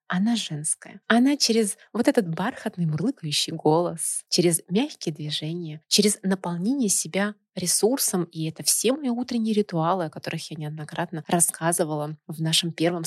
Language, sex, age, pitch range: Russian, female, 30-49, 160-205 Hz